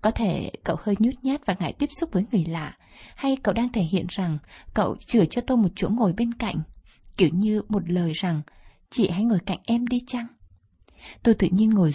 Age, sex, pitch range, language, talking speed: 20-39, female, 175-235 Hz, Vietnamese, 220 wpm